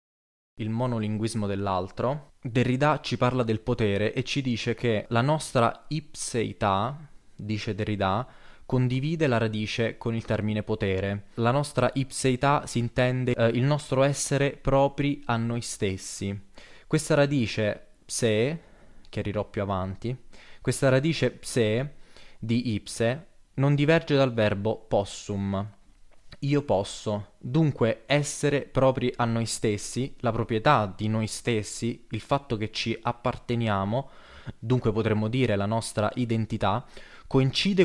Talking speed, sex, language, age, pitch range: 125 wpm, male, Italian, 20-39, 105-135 Hz